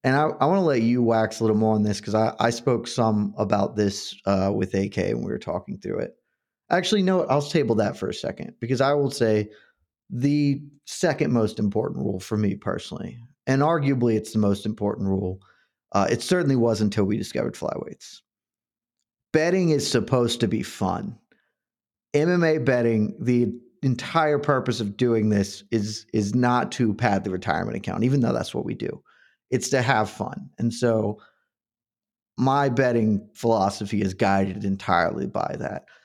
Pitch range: 105-125 Hz